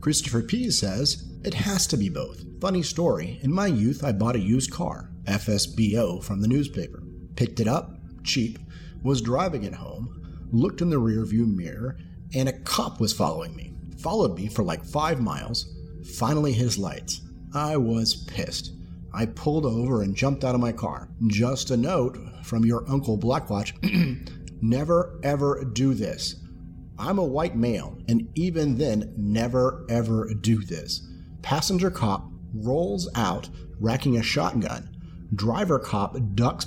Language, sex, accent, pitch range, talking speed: English, male, American, 105-135 Hz, 155 wpm